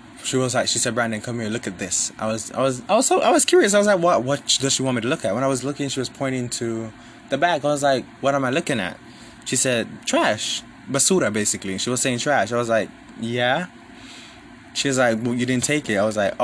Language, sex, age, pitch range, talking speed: English, male, 20-39, 115-140 Hz, 275 wpm